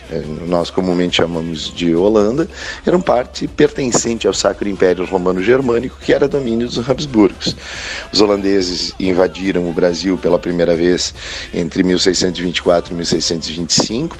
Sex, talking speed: male, 125 wpm